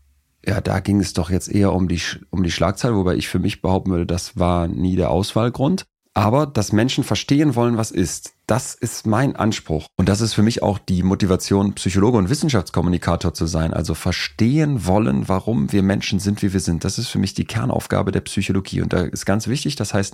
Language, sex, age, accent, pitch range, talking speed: German, male, 30-49, German, 85-110 Hz, 215 wpm